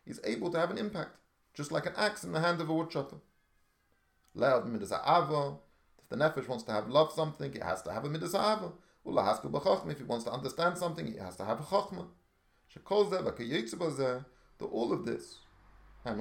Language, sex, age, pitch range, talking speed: English, male, 30-49, 110-170 Hz, 170 wpm